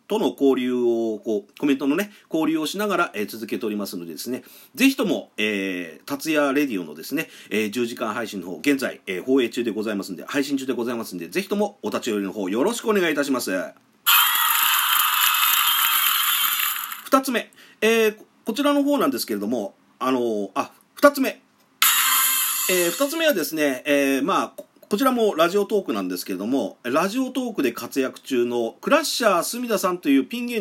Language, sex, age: Japanese, male, 40-59